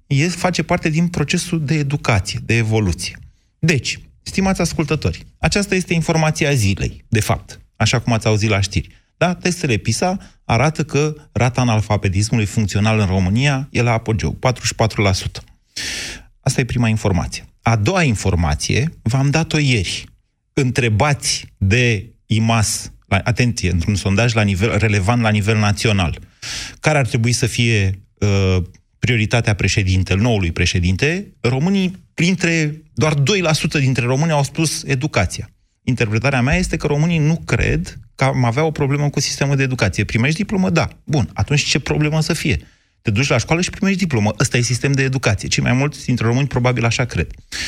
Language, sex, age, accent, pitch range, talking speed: Romanian, male, 30-49, native, 105-145 Hz, 155 wpm